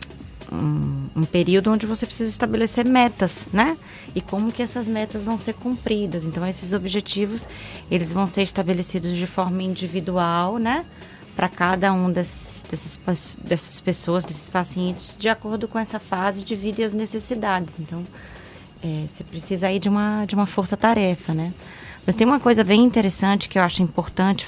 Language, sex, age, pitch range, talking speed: Portuguese, female, 20-39, 175-215 Hz, 160 wpm